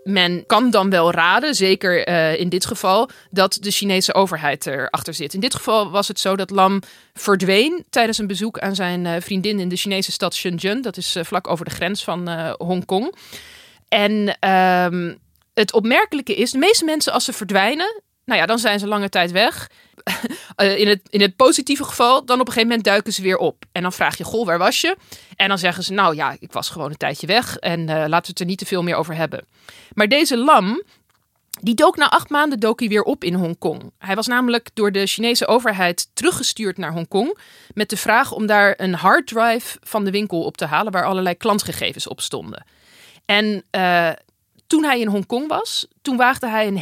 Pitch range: 180-235 Hz